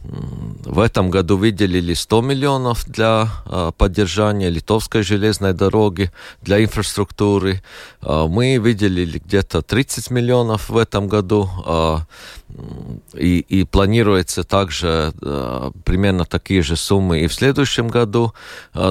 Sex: male